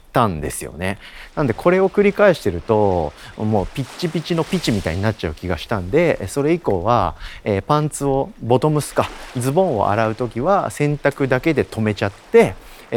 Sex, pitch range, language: male, 95-145 Hz, Japanese